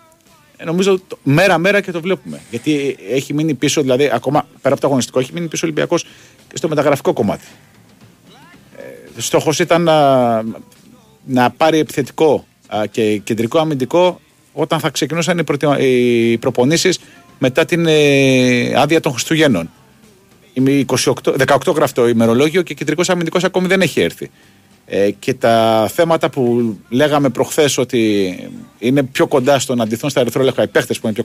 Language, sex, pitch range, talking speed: Greek, male, 120-180 Hz, 145 wpm